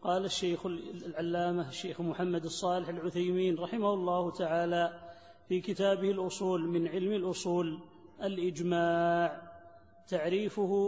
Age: 30-49